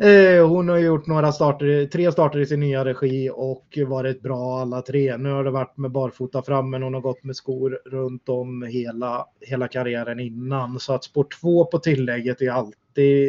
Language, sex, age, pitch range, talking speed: Swedish, male, 20-39, 125-140 Hz, 195 wpm